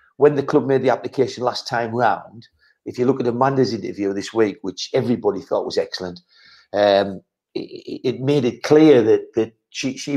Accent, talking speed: British, 190 wpm